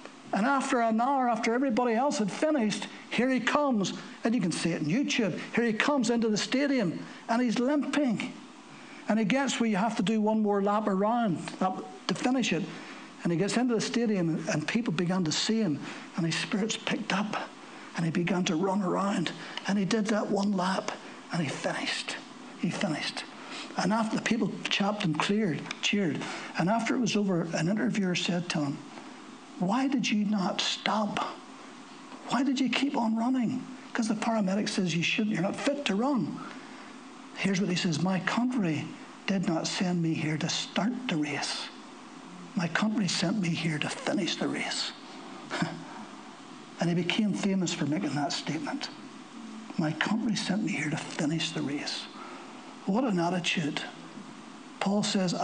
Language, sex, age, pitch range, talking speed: English, male, 60-79, 190-260 Hz, 175 wpm